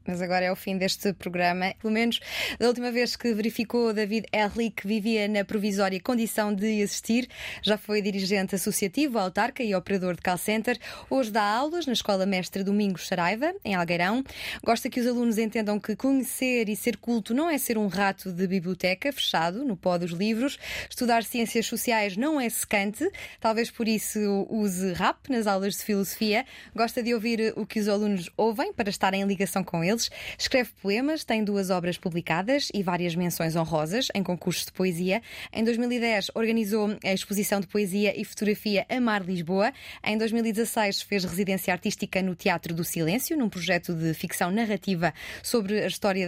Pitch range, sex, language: 195-235 Hz, female, Portuguese